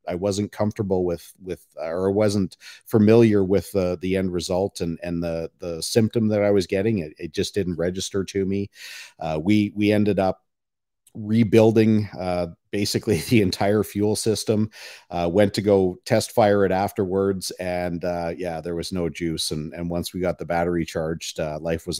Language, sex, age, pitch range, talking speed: English, male, 50-69, 90-105 Hz, 185 wpm